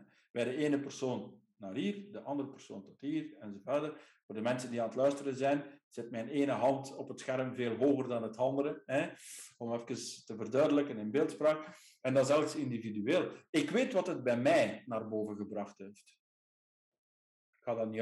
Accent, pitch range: Dutch, 115-150 Hz